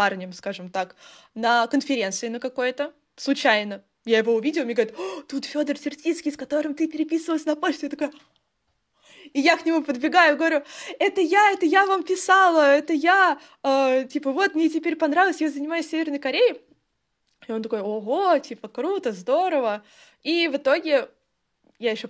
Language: Russian